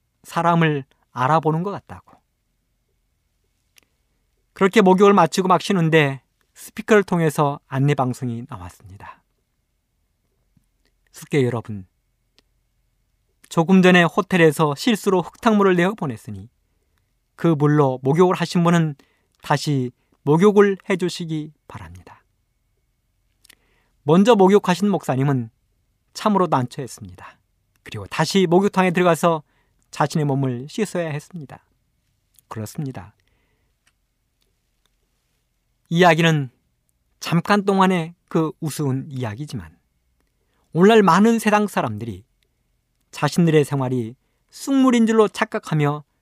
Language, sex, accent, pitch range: Korean, male, native, 110-185 Hz